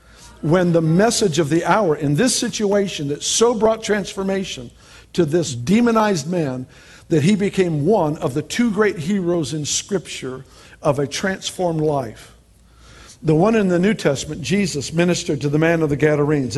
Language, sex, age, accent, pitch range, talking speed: English, male, 50-69, American, 145-180 Hz, 165 wpm